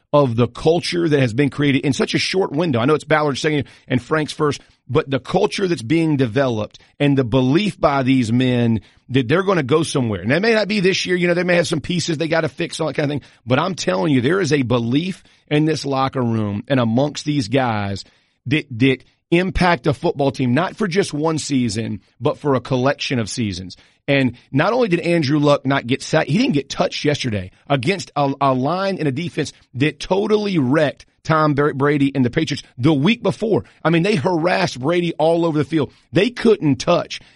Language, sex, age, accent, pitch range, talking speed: English, male, 40-59, American, 130-165 Hz, 220 wpm